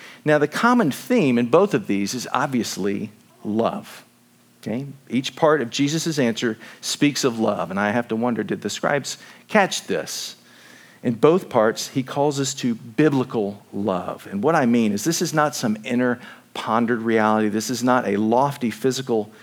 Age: 50-69